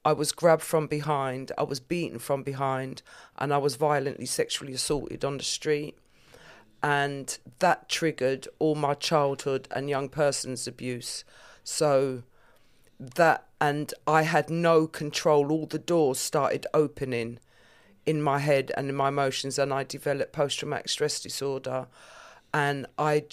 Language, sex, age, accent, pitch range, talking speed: English, female, 40-59, British, 135-155 Hz, 145 wpm